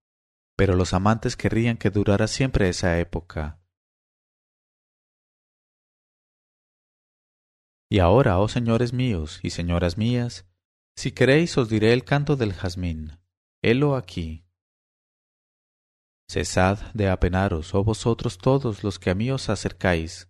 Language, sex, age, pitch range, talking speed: English, male, 30-49, 85-115 Hz, 115 wpm